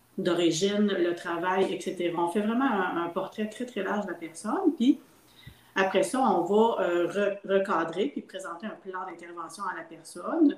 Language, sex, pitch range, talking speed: French, female, 175-215 Hz, 175 wpm